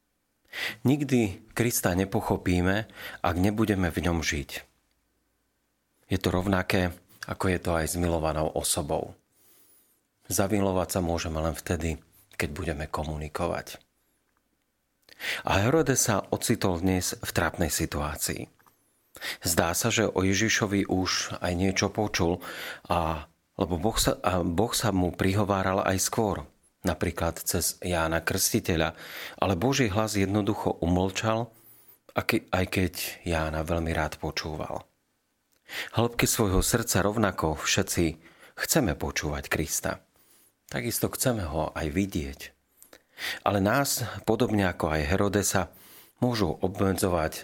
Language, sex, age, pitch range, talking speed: Slovak, male, 40-59, 85-105 Hz, 115 wpm